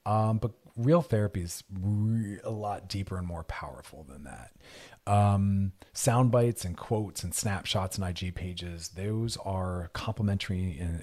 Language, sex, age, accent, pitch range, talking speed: English, male, 40-59, American, 95-120 Hz, 145 wpm